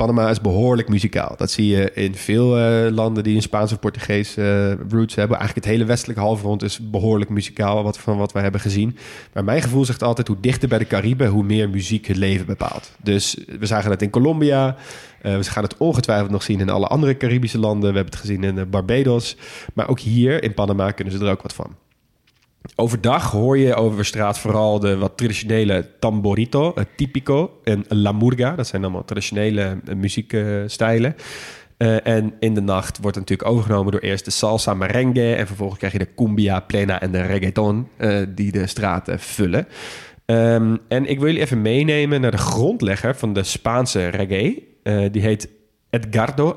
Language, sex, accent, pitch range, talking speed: Dutch, male, Dutch, 100-120 Hz, 195 wpm